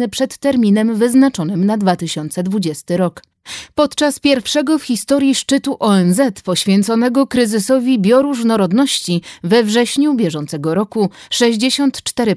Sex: female